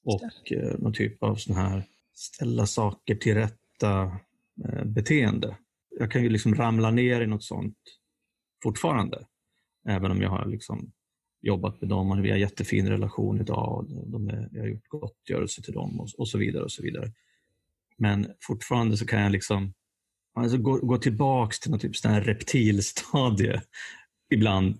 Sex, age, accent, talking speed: male, 30-49, native, 150 wpm